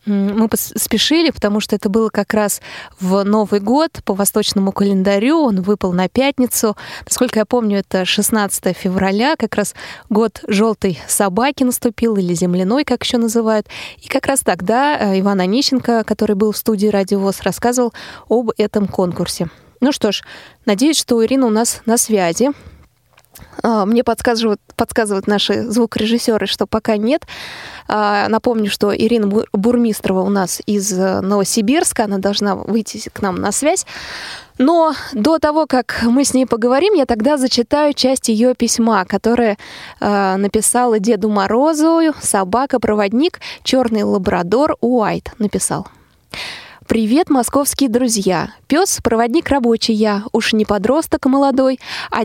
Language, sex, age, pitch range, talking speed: Russian, female, 20-39, 205-255 Hz, 135 wpm